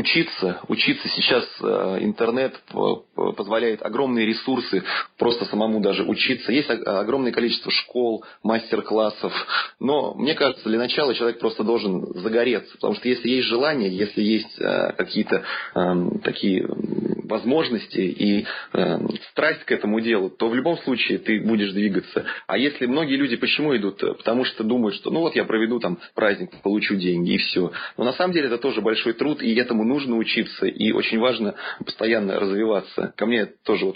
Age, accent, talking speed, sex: 30-49, native, 155 wpm, male